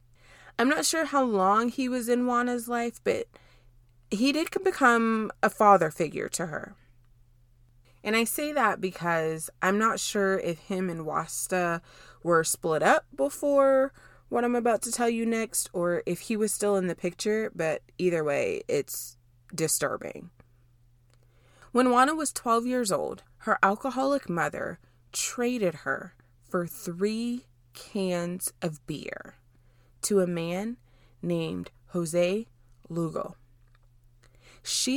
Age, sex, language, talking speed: 20-39, female, English, 135 wpm